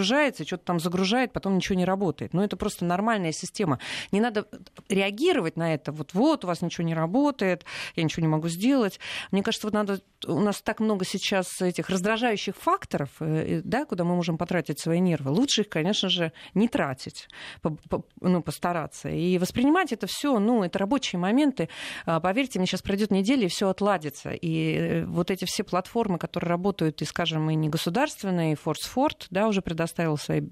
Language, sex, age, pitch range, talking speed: Russian, female, 30-49, 165-210 Hz, 180 wpm